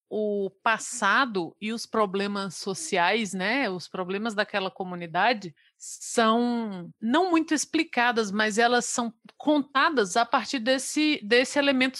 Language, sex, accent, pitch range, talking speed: Portuguese, female, Brazilian, 200-270 Hz, 120 wpm